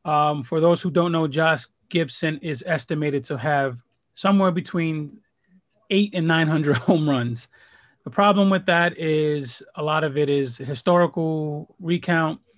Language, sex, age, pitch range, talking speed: English, male, 30-49, 135-165 Hz, 150 wpm